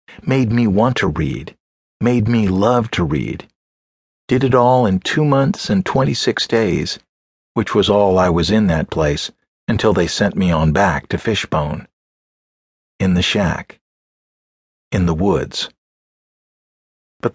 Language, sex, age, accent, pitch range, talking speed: English, male, 50-69, American, 85-125 Hz, 145 wpm